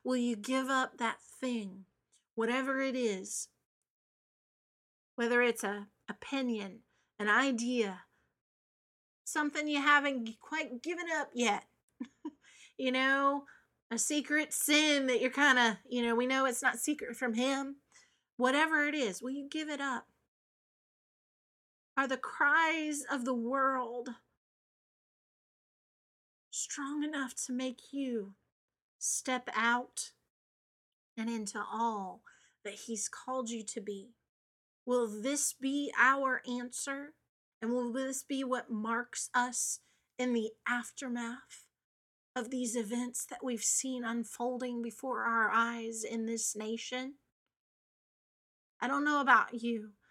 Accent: American